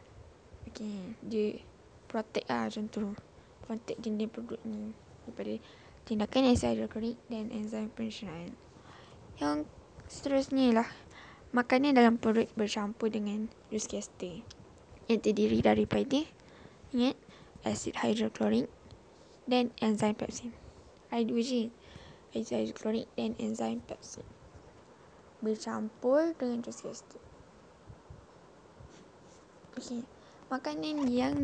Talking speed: 95 wpm